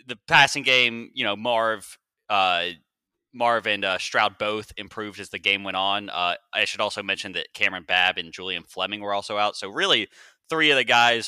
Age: 20-39